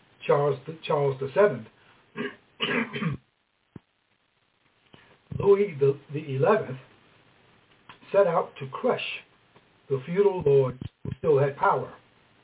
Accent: American